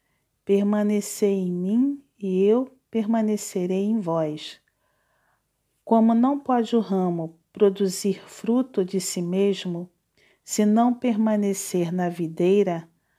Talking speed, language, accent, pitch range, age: 105 wpm, Portuguese, Brazilian, 185-230 Hz, 40-59